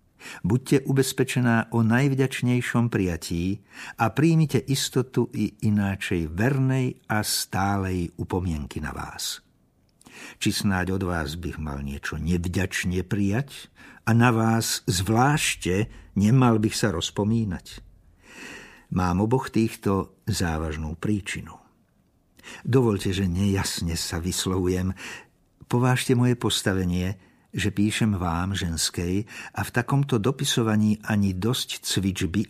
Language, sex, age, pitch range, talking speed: Slovak, male, 60-79, 90-125 Hz, 105 wpm